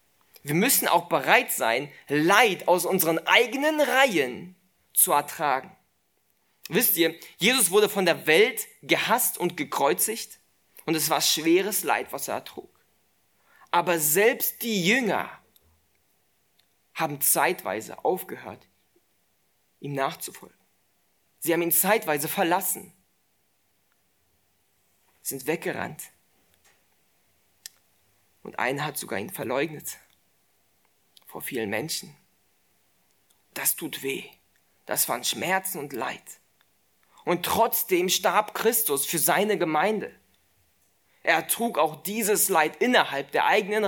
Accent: German